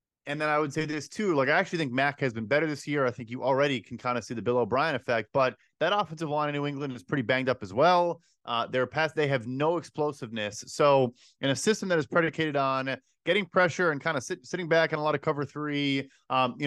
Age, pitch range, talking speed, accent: 30-49, 135-170 Hz, 265 wpm, American